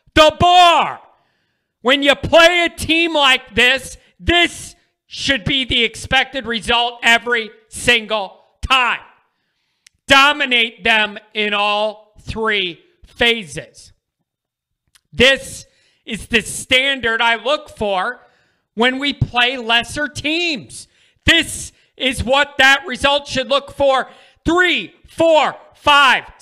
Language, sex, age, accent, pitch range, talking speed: English, male, 40-59, American, 230-295 Hz, 105 wpm